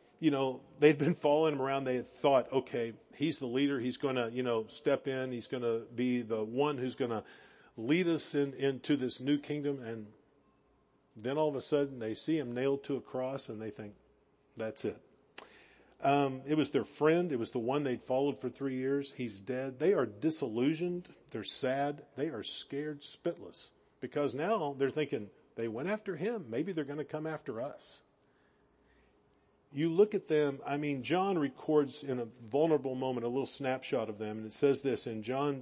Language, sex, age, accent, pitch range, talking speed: English, male, 50-69, American, 125-155 Hz, 200 wpm